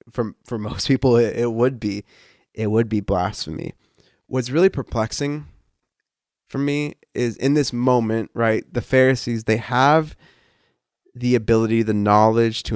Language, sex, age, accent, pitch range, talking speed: English, male, 20-39, American, 110-130 Hz, 145 wpm